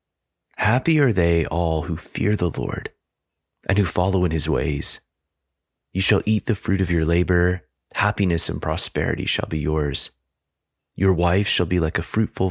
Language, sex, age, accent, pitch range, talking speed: English, male, 30-49, American, 75-95 Hz, 170 wpm